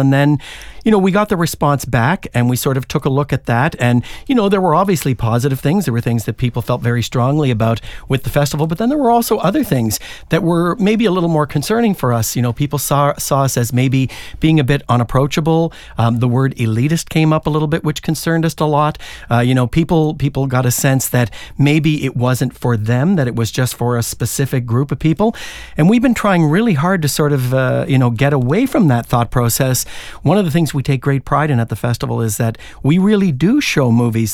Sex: male